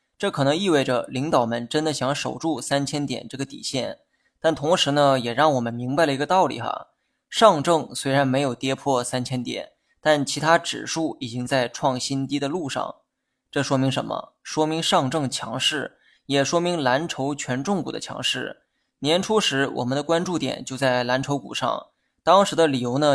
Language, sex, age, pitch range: Chinese, male, 20-39, 130-160 Hz